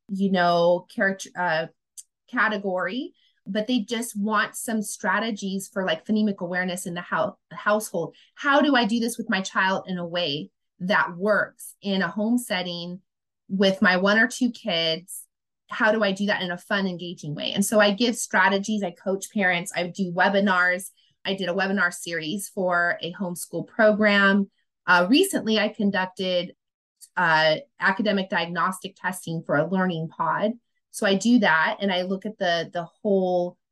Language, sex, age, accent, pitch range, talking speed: English, female, 30-49, American, 175-210 Hz, 165 wpm